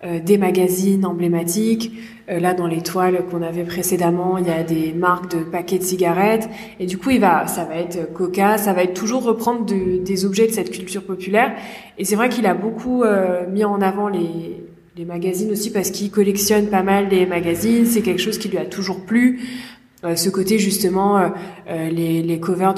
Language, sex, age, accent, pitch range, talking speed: French, female, 20-39, French, 175-200 Hz, 210 wpm